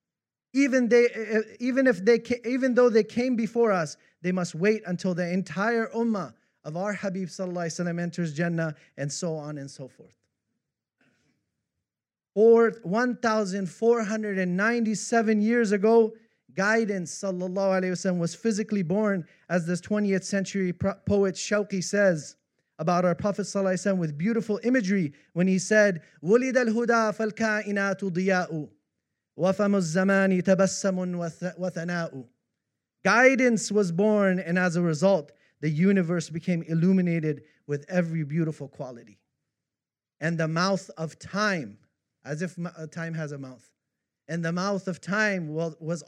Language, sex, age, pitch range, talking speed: English, male, 30-49, 165-210 Hz, 125 wpm